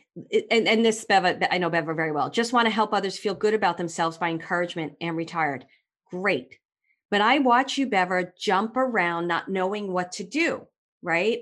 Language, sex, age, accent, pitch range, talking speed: English, female, 40-59, American, 175-260 Hz, 190 wpm